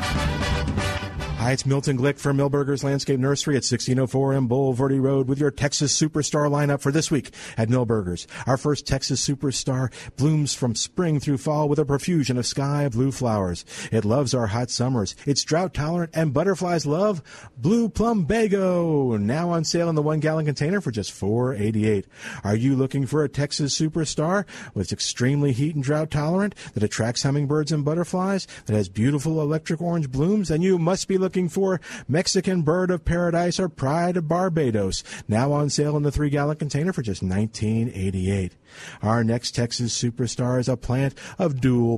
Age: 50-69